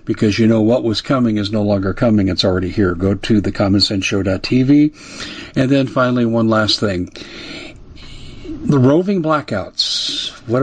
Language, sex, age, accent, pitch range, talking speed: English, male, 50-69, American, 105-145 Hz, 150 wpm